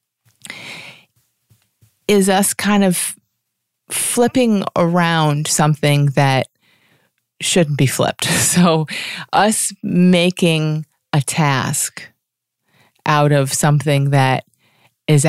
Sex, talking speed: female, 80 wpm